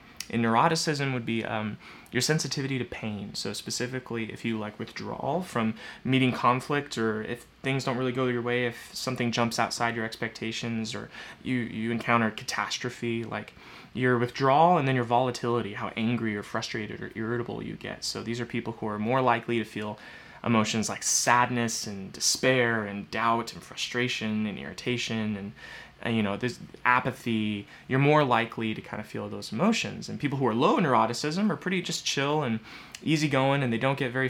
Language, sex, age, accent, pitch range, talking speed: English, male, 20-39, American, 110-130 Hz, 185 wpm